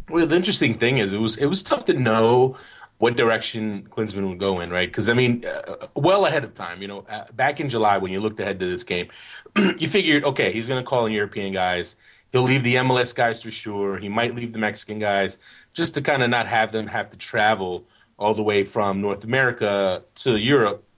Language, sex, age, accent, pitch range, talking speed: English, male, 30-49, American, 100-125 Hz, 230 wpm